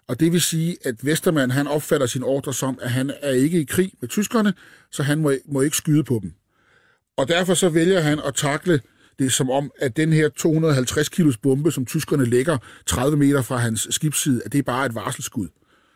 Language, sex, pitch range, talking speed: Danish, male, 120-155 Hz, 210 wpm